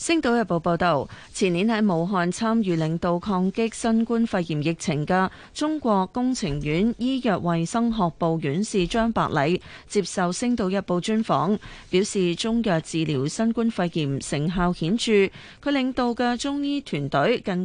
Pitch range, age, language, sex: 170-230 Hz, 30-49, Chinese, female